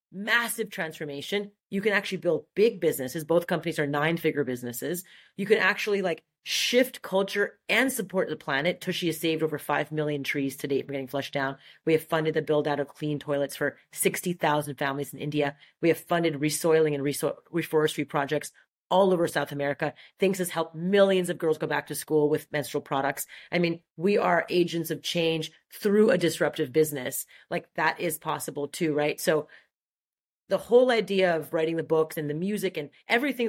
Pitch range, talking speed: 150-190 Hz, 190 wpm